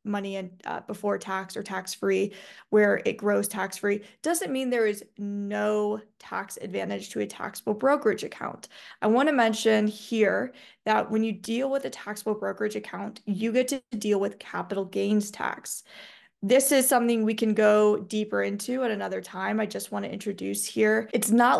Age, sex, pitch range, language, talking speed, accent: 20-39, female, 200-230 Hz, English, 180 wpm, American